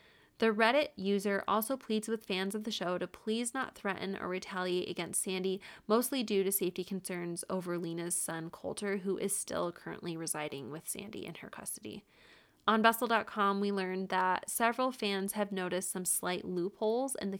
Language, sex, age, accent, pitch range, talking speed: English, female, 20-39, American, 180-225 Hz, 175 wpm